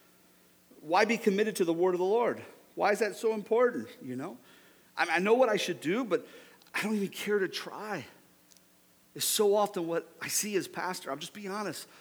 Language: English